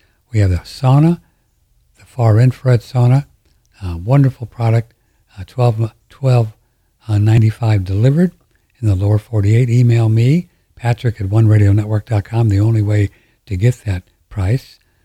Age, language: 60-79, English